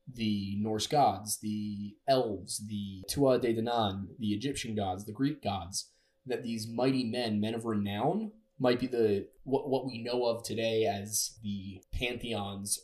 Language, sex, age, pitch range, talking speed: English, male, 20-39, 105-130 Hz, 160 wpm